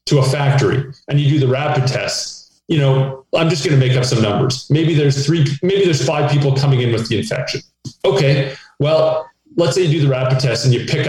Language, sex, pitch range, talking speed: English, male, 130-155 Hz, 225 wpm